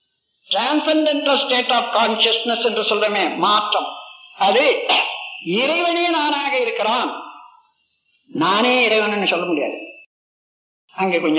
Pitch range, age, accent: 230-315 Hz, 50-69, native